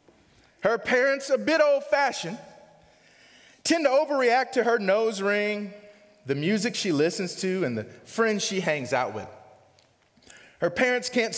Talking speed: 140 wpm